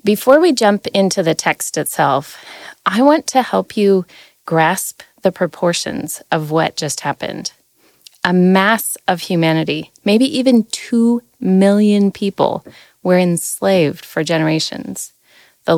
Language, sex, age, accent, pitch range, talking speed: English, female, 30-49, American, 170-230 Hz, 125 wpm